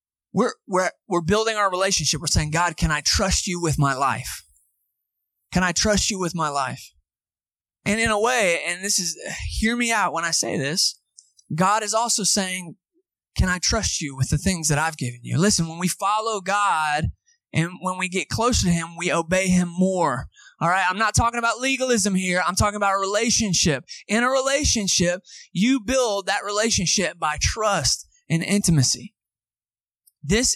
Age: 20-39